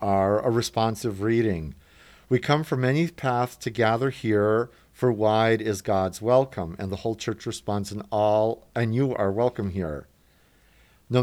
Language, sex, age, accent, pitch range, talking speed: English, male, 50-69, American, 100-125 Hz, 160 wpm